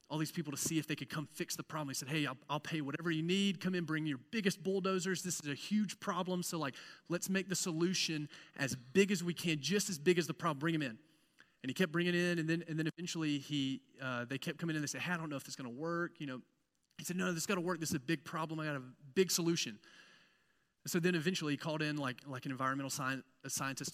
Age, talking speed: 30-49, 285 wpm